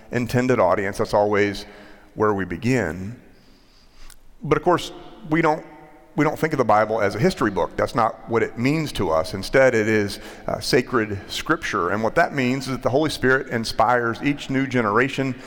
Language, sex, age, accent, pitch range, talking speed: English, male, 40-59, American, 105-130 Hz, 180 wpm